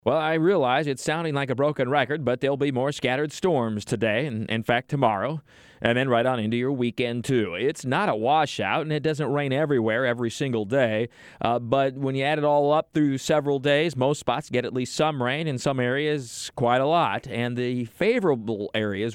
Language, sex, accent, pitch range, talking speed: English, male, American, 115-145 Hz, 215 wpm